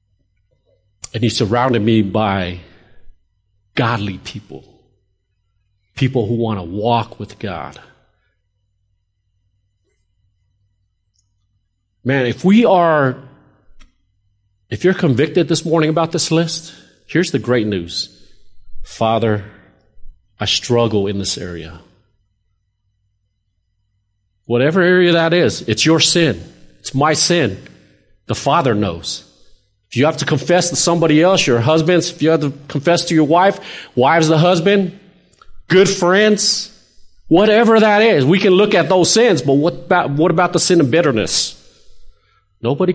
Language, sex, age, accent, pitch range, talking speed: English, male, 40-59, American, 100-165 Hz, 125 wpm